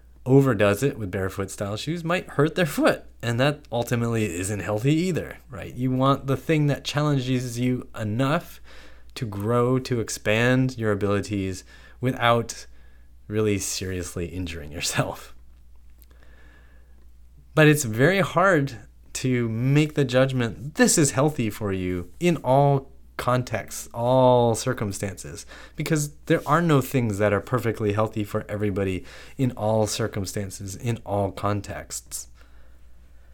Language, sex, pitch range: English, male, 95-135 Hz